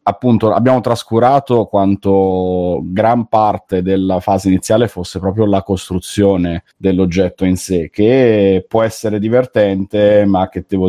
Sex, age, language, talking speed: male, 30-49, Italian, 125 wpm